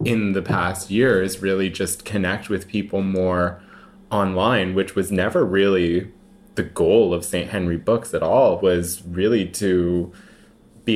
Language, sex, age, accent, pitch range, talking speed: English, male, 20-39, American, 90-105 Hz, 150 wpm